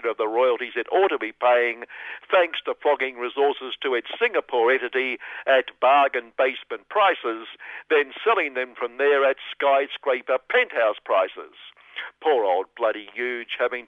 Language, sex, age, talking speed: English, male, 60-79, 145 wpm